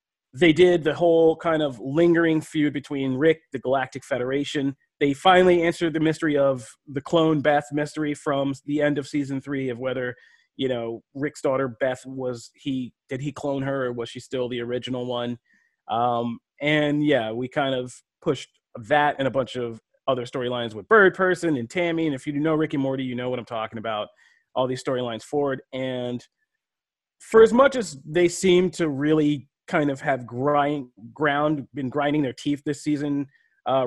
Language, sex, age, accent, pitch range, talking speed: English, male, 30-49, American, 130-155 Hz, 185 wpm